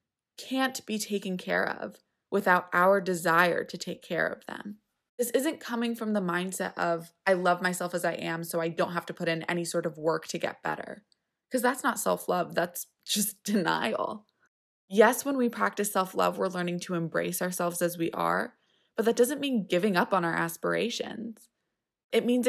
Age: 20-39